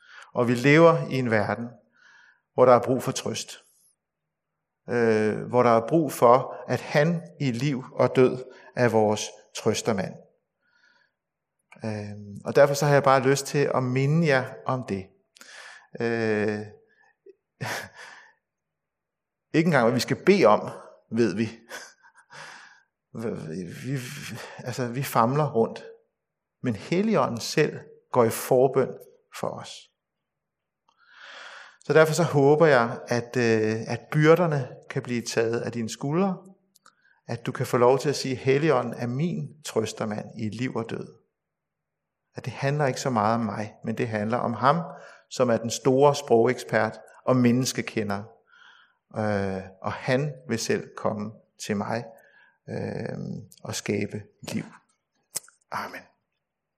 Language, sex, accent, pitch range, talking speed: Danish, male, native, 115-145 Hz, 130 wpm